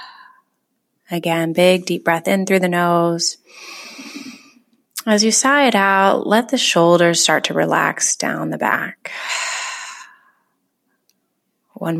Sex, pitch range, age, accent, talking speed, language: female, 170-255 Hz, 20-39, American, 115 wpm, English